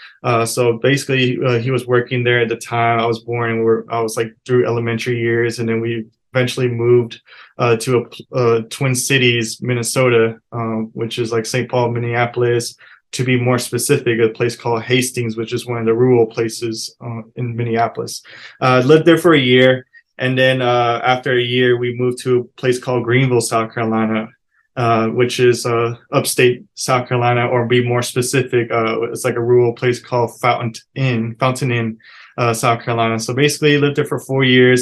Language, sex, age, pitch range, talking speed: English, male, 20-39, 115-125 Hz, 195 wpm